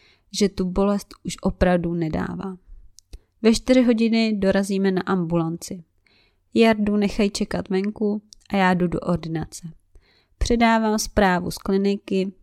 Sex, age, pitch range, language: female, 20-39, 190-235 Hz, Czech